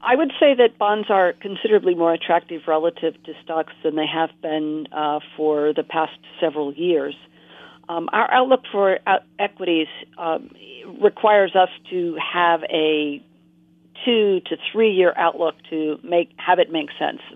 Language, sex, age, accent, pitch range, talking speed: English, female, 50-69, American, 155-175 Hz, 150 wpm